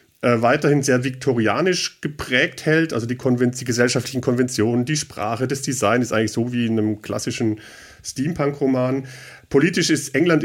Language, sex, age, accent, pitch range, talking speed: German, male, 40-59, German, 130-155 Hz, 150 wpm